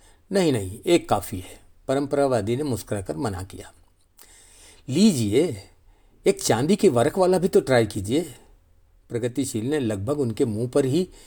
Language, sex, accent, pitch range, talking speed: Hindi, male, native, 90-130 Hz, 145 wpm